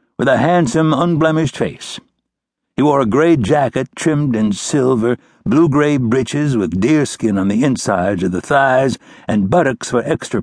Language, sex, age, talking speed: English, male, 60-79, 155 wpm